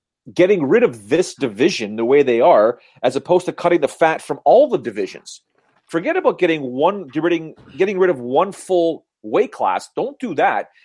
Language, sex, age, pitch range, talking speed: English, male, 40-59, 150-215 Hz, 180 wpm